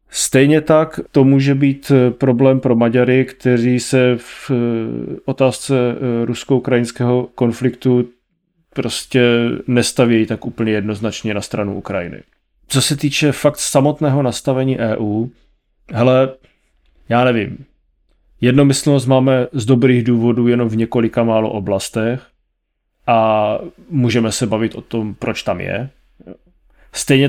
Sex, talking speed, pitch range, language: male, 115 wpm, 110-130 Hz, Czech